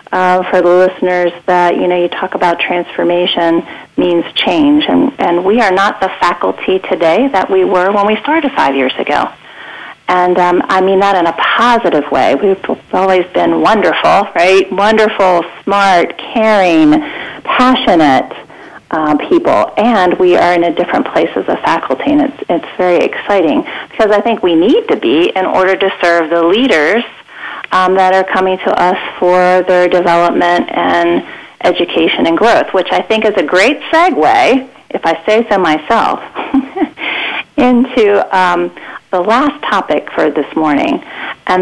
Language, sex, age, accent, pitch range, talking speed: English, female, 40-59, American, 180-255 Hz, 160 wpm